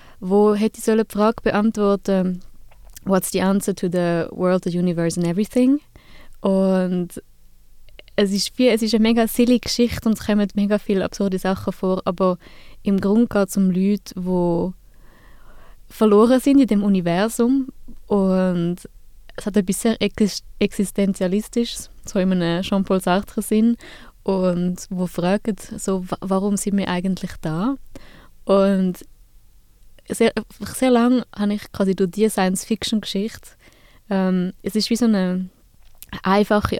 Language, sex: German, female